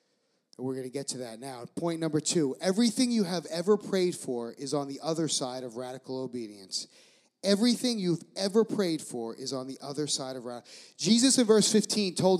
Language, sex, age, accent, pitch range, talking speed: English, male, 30-49, American, 160-230 Hz, 200 wpm